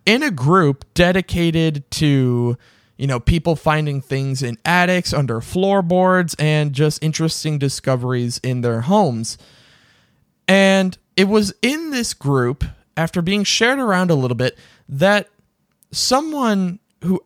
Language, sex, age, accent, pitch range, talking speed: English, male, 20-39, American, 125-185 Hz, 130 wpm